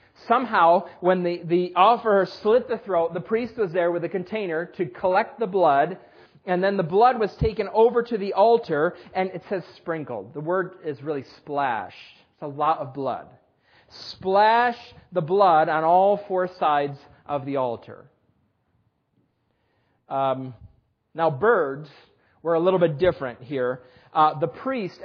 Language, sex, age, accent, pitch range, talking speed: English, male, 40-59, American, 145-185 Hz, 155 wpm